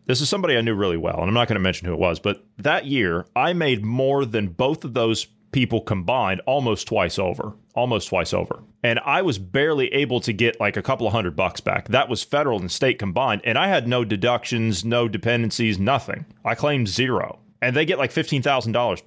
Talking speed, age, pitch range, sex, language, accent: 220 wpm, 30-49, 110-140 Hz, male, English, American